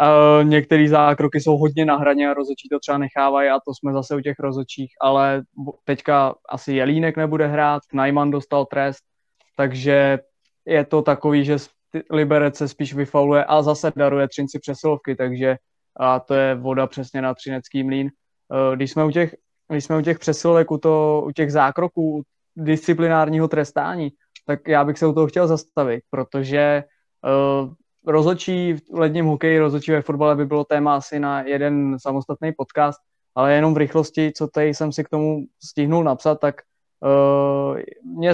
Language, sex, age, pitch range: Czech, male, 20-39, 140-155 Hz